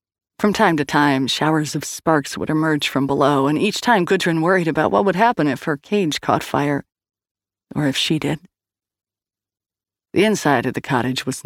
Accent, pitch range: American, 105-160 Hz